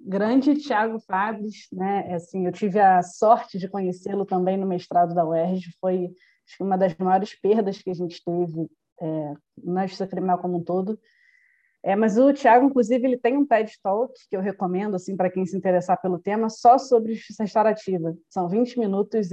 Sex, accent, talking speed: female, Brazilian, 180 wpm